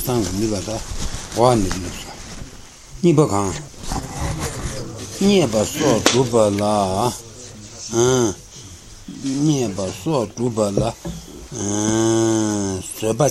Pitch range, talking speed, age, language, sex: 100-125 Hz, 65 wpm, 60-79, Italian, male